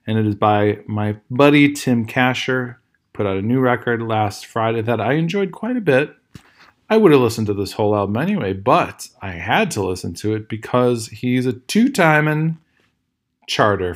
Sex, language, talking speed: male, English, 180 wpm